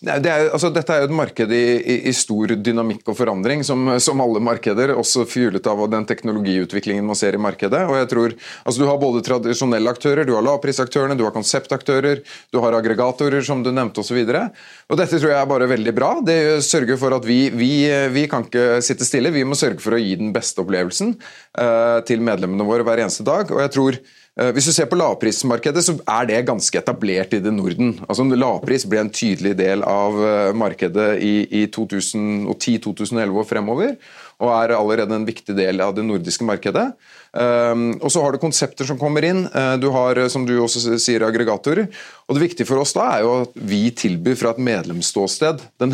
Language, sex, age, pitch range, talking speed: English, male, 30-49, 110-135 Hz, 205 wpm